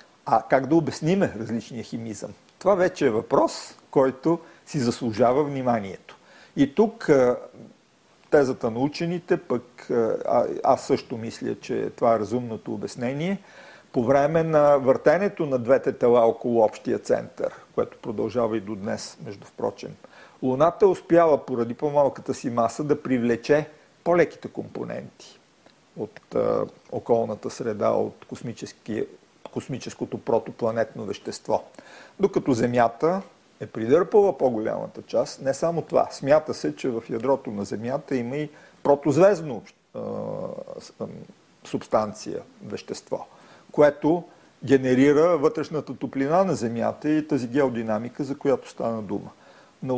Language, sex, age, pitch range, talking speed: Bulgarian, male, 50-69, 120-160 Hz, 120 wpm